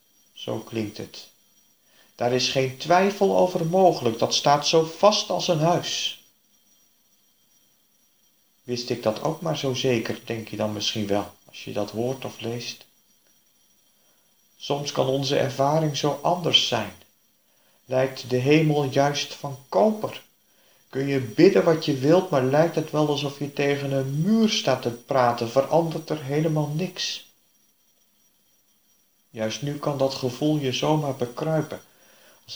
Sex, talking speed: male, 145 wpm